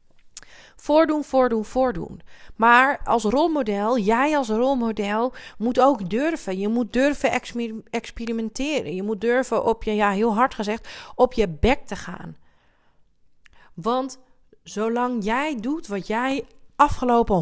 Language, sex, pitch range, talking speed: Dutch, female, 215-285 Hz, 130 wpm